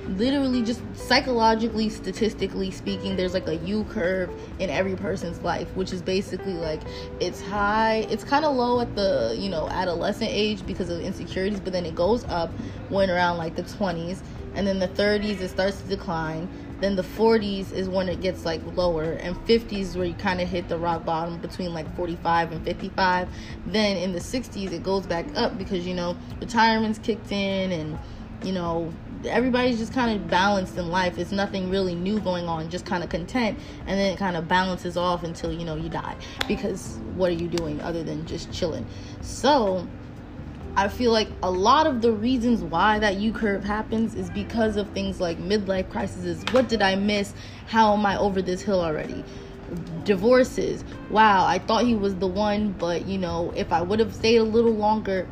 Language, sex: English, female